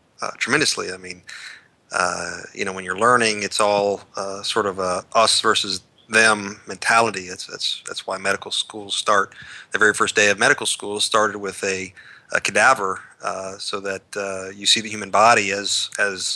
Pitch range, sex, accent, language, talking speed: 95-105 Hz, male, American, English, 185 wpm